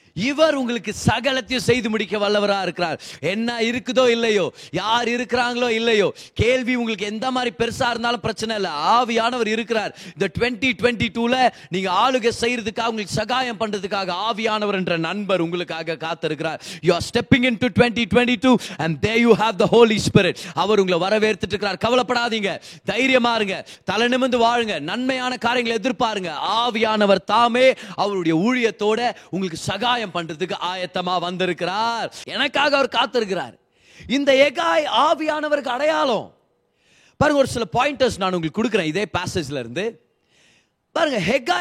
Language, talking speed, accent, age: Tamil, 45 wpm, native, 30-49